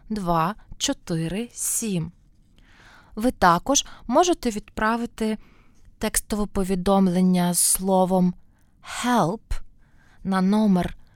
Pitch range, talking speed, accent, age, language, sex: 175-225 Hz, 70 wpm, native, 20-39, Ukrainian, female